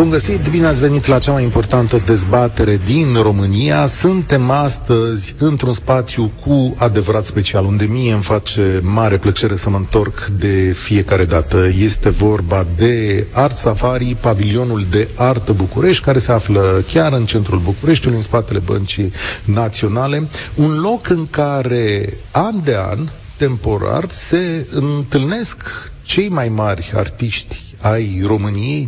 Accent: native